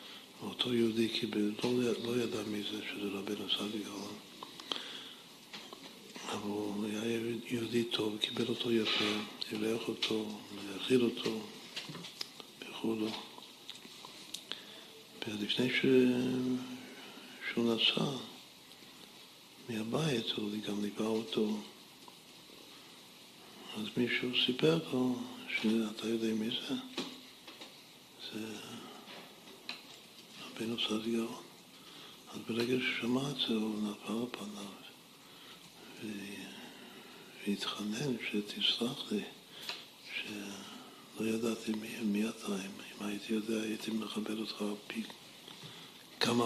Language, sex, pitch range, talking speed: Hebrew, male, 105-120 Hz, 90 wpm